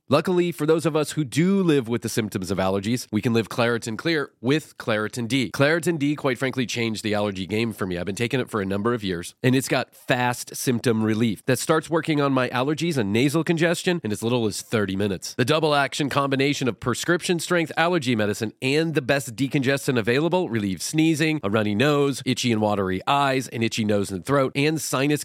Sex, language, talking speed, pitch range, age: male, English, 215 wpm, 110-155 Hz, 30-49